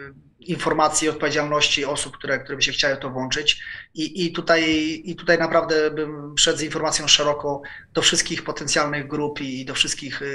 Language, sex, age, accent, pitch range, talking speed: Polish, male, 20-39, native, 135-155 Hz, 170 wpm